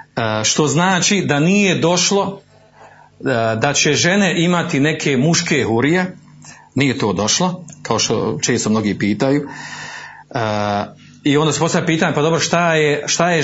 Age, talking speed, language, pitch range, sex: 40-59, 150 wpm, Croatian, 120-160 Hz, male